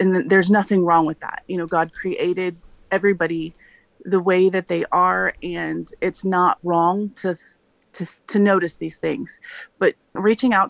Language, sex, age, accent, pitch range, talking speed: English, female, 30-49, American, 160-190 Hz, 165 wpm